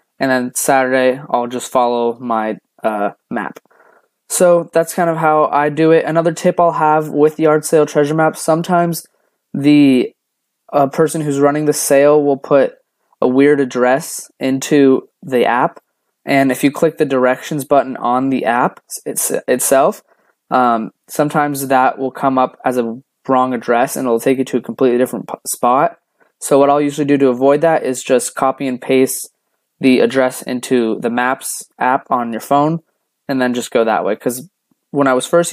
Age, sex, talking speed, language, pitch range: 20-39, male, 180 wpm, English, 125-150 Hz